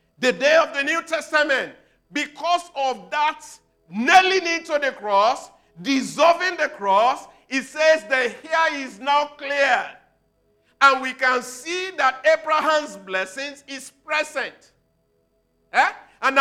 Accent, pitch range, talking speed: Nigerian, 230-305 Hz, 125 wpm